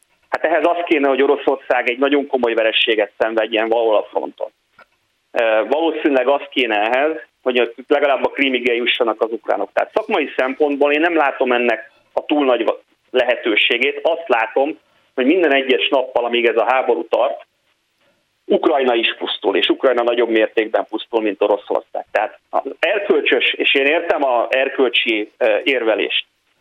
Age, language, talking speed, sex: 30-49, Hungarian, 145 wpm, male